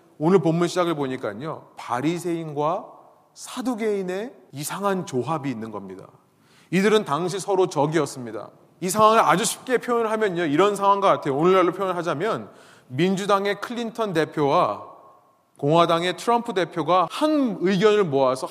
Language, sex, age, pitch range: Korean, male, 30-49, 150-215 Hz